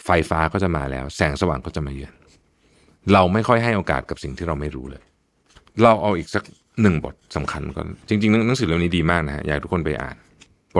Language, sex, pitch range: Thai, male, 75-110 Hz